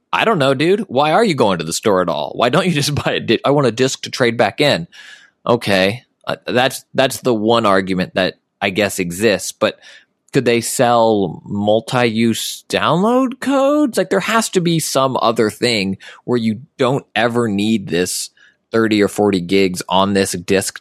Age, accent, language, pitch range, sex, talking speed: 20-39, American, English, 95-125 Hz, male, 190 wpm